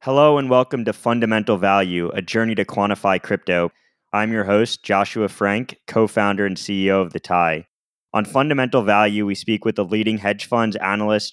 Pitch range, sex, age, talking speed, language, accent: 95-110 Hz, male, 10-29, 175 wpm, English, American